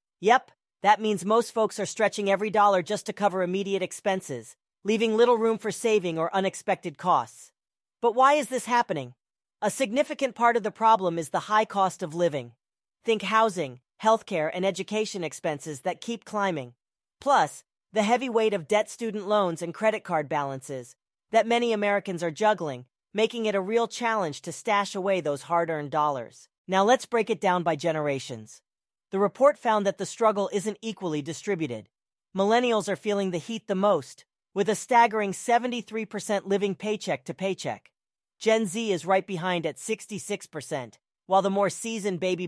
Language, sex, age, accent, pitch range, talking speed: English, female, 40-59, American, 170-220 Hz, 170 wpm